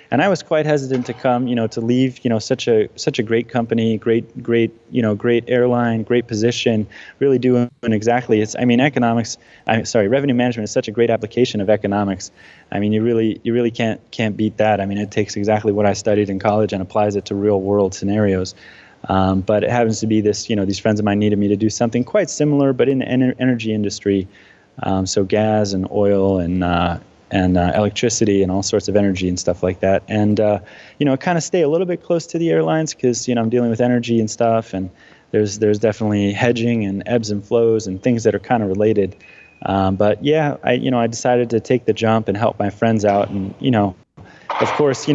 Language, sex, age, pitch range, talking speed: English, male, 20-39, 100-125 Hz, 240 wpm